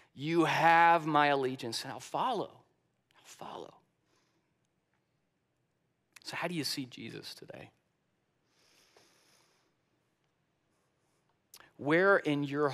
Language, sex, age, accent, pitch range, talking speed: English, male, 40-59, American, 120-155 Hz, 90 wpm